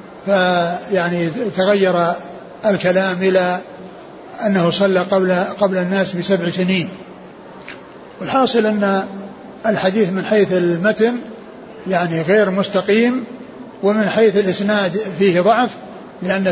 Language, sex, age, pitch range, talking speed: Arabic, male, 60-79, 185-205 Hz, 100 wpm